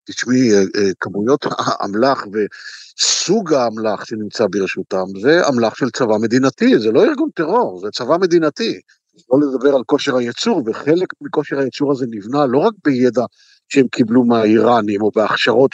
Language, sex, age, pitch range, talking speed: Hebrew, male, 60-79, 120-150 Hz, 145 wpm